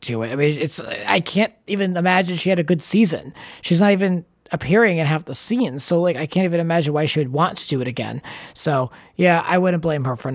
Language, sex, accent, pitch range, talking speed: English, male, American, 150-195 Hz, 250 wpm